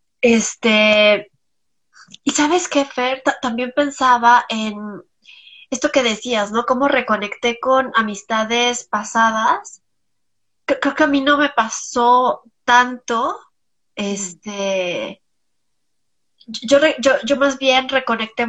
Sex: female